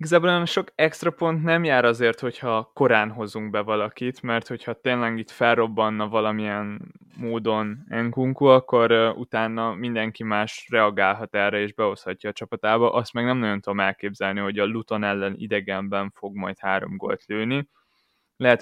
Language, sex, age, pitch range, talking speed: Hungarian, male, 20-39, 105-125 Hz, 155 wpm